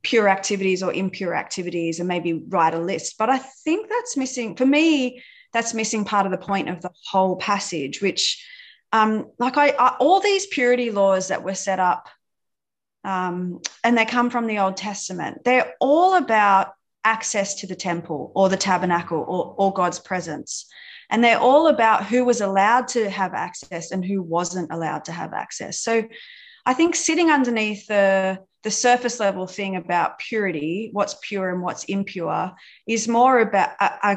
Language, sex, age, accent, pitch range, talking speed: English, female, 30-49, Australian, 180-230 Hz, 175 wpm